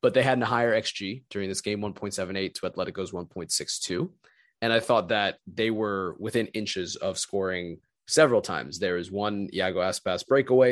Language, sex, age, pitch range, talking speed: English, male, 20-39, 100-125 Hz, 175 wpm